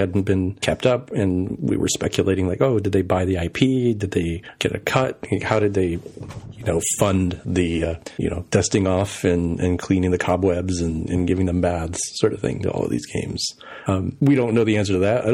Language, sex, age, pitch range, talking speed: English, male, 40-59, 95-125 Hz, 230 wpm